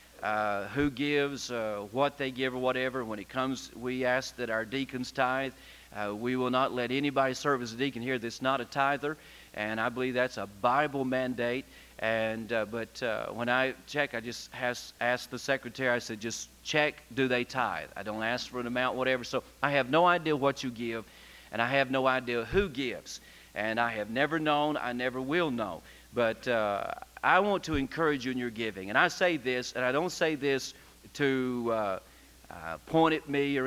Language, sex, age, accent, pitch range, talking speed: English, male, 40-59, American, 120-145 Hz, 210 wpm